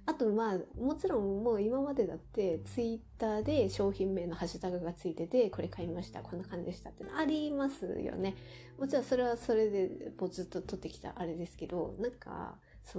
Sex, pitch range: female, 175-265 Hz